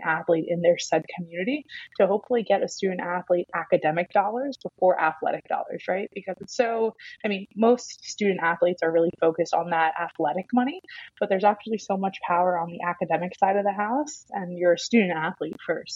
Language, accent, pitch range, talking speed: English, American, 170-200 Hz, 190 wpm